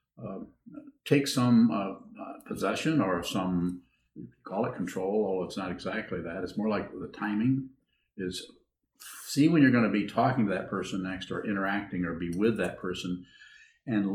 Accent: American